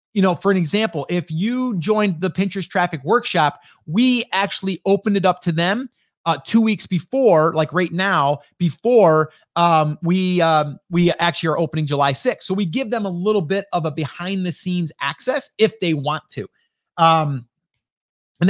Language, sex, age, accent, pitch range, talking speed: English, male, 30-49, American, 155-200 Hz, 180 wpm